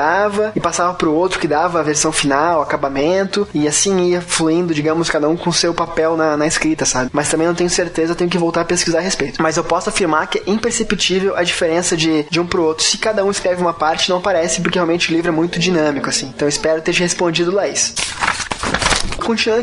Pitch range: 155-185 Hz